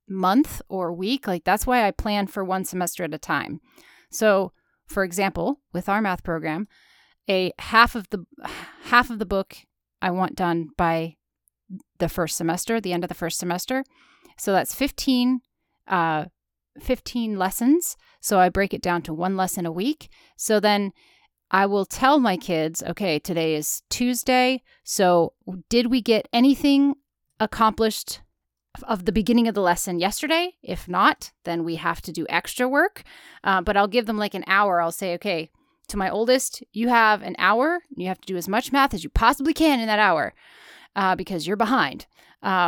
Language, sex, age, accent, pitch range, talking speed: English, female, 30-49, American, 180-240 Hz, 180 wpm